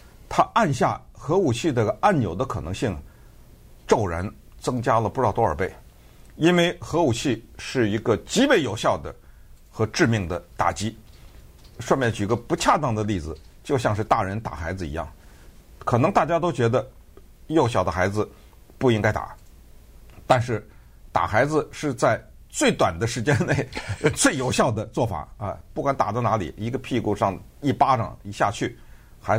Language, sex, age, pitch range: Chinese, male, 50-69, 95-140 Hz